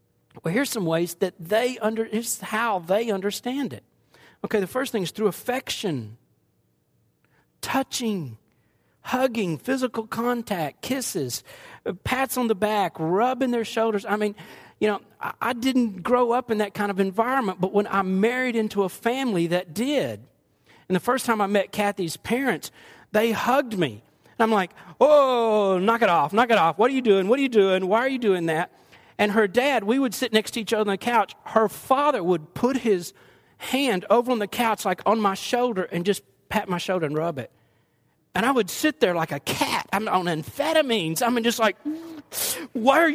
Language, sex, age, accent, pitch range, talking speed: English, male, 40-59, American, 180-250 Hz, 190 wpm